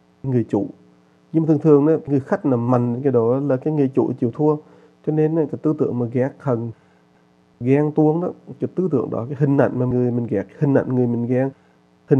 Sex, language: male, English